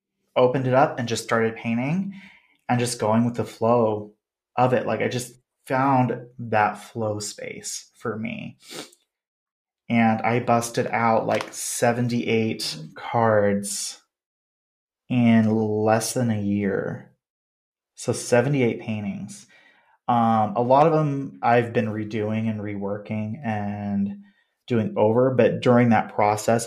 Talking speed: 125 wpm